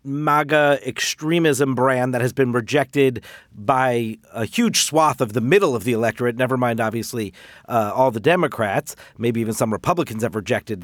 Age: 40-59